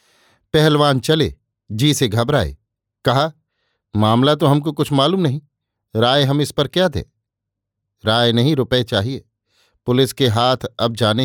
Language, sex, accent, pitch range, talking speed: Hindi, male, native, 115-145 Hz, 145 wpm